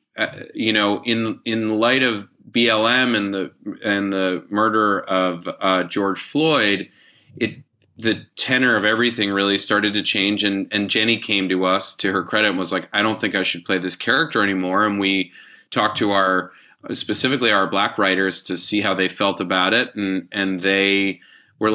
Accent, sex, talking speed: American, male, 185 wpm